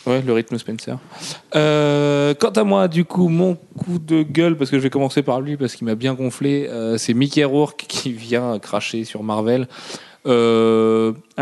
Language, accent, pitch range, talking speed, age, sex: French, French, 115-150 Hz, 190 wpm, 30-49, male